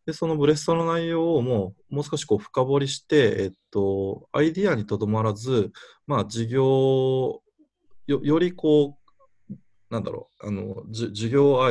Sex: male